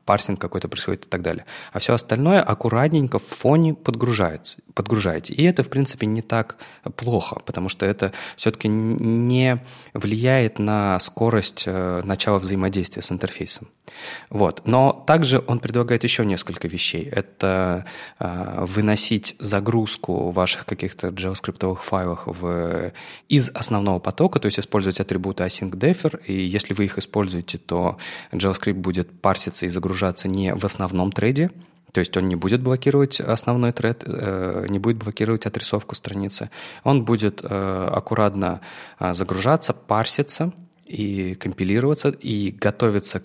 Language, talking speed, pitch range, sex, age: Russian, 135 wpm, 95-115 Hz, male, 20-39